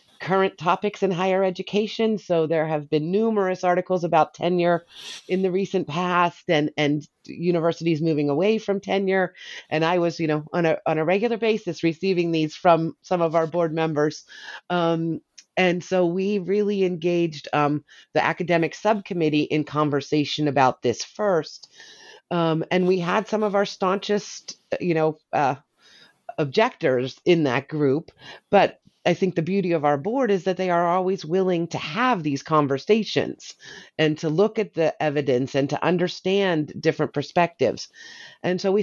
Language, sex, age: English, female, 30-49